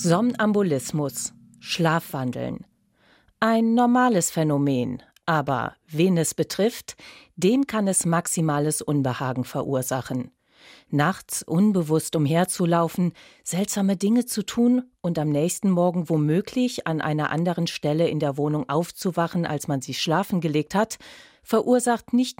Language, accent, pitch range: German, German, 140-210 Hz